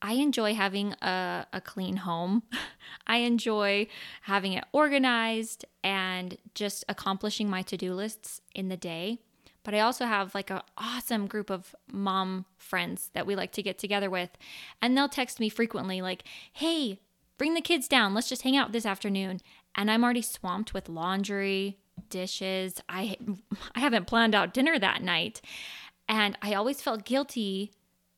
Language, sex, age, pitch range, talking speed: English, female, 20-39, 190-225 Hz, 160 wpm